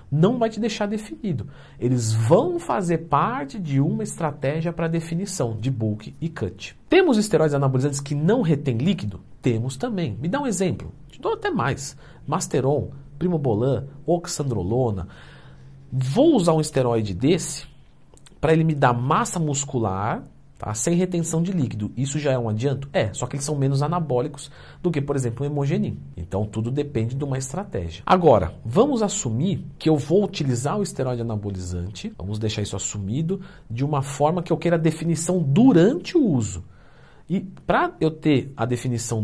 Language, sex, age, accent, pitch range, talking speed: Portuguese, male, 50-69, Brazilian, 115-165 Hz, 165 wpm